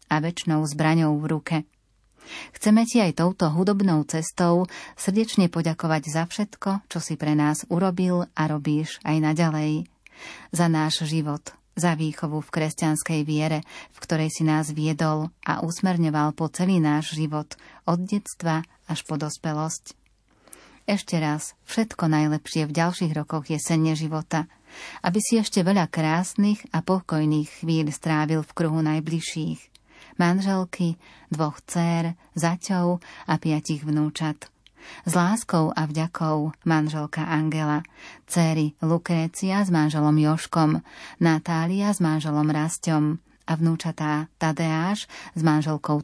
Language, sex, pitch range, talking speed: Slovak, female, 155-175 Hz, 125 wpm